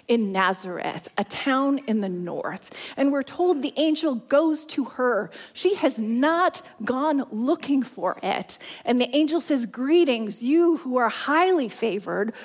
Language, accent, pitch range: English, American, 220-300 Hz